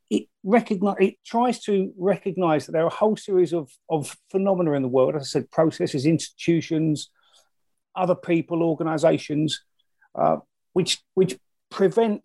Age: 40-59